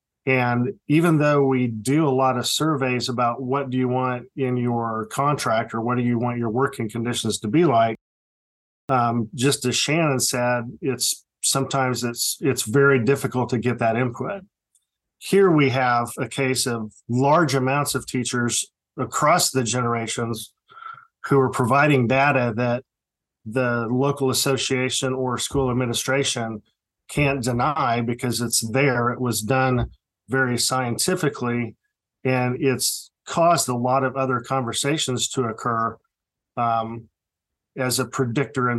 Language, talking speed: English, 140 wpm